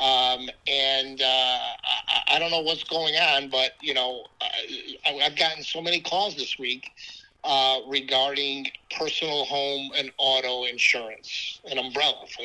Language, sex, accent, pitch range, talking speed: English, male, American, 130-160 Hz, 145 wpm